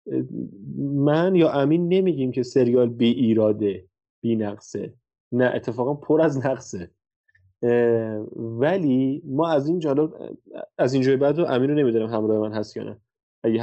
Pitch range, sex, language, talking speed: 115-145 Hz, male, Persian, 150 wpm